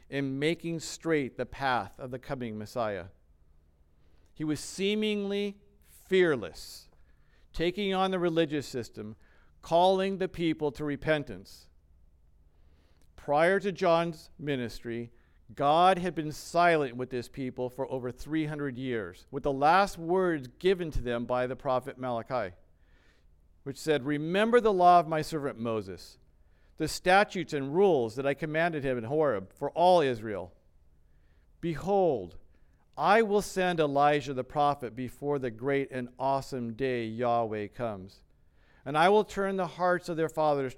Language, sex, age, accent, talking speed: English, male, 50-69, American, 140 wpm